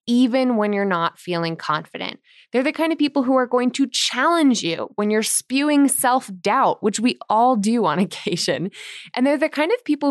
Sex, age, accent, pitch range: female, 20-39, American, 180-265 Hz